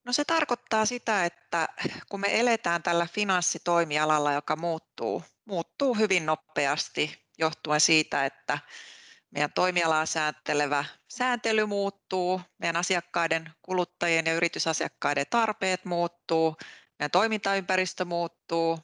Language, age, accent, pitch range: Finnish, 30-49, native, 155-185 Hz